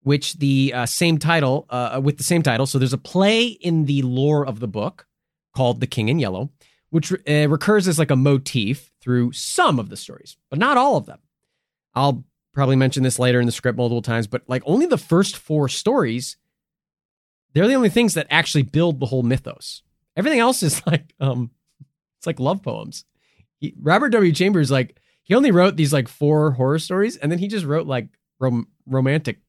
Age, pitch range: 20-39, 125-175 Hz